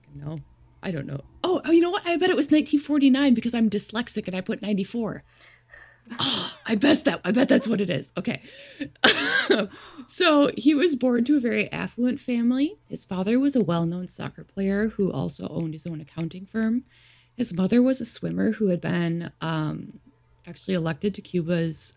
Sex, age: female, 20-39